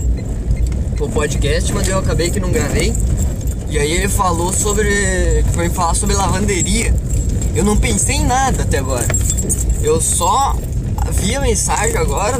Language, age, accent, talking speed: Portuguese, 10-29, Brazilian, 145 wpm